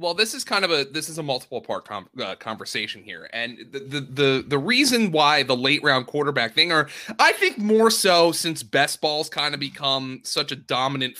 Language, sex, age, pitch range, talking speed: English, male, 30-49, 130-190 Hz, 215 wpm